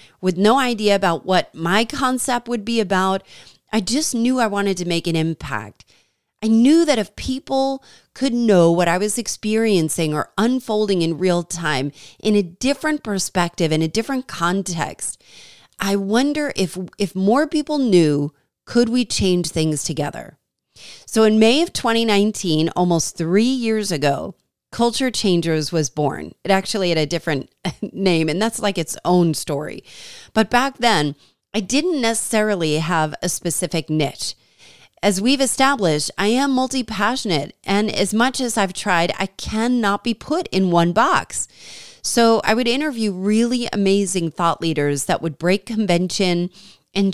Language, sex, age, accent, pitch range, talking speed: English, female, 30-49, American, 170-230 Hz, 155 wpm